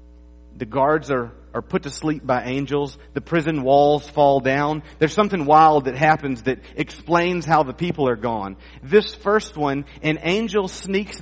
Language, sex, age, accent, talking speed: English, male, 40-59, American, 170 wpm